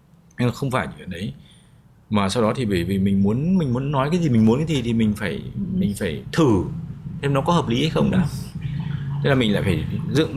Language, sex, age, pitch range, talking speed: Vietnamese, male, 20-39, 105-140 Hz, 245 wpm